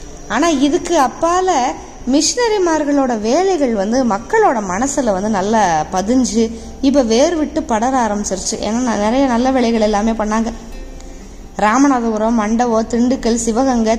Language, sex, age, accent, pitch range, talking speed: Tamil, female, 20-39, native, 225-290 Hz, 110 wpm